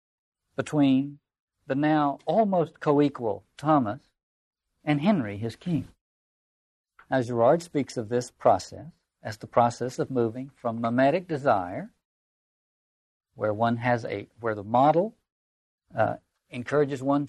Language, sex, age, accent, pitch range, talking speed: English, male, 60-79, American, 120-165 Hz, 120 wpm